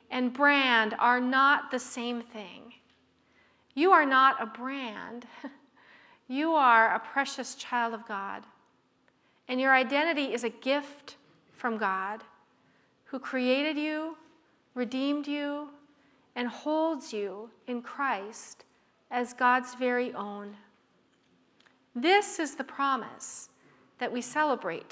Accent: American